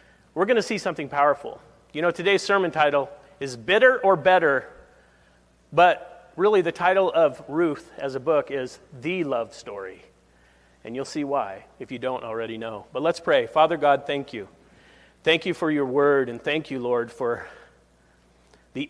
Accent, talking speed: American, 175 wpm